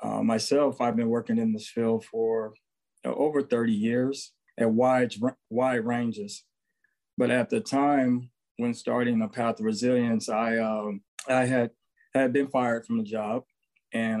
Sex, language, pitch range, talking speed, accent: male, English, 110-150 Hz, 165 wpm, American